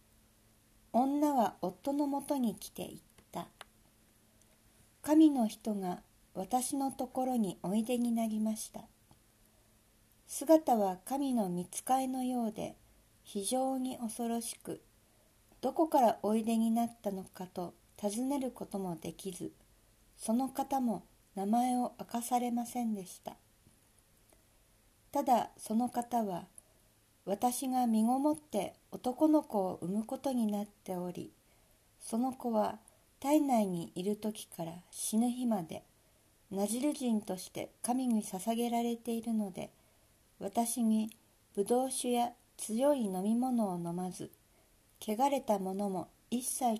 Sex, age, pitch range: female, 50-69, 170-245 Hz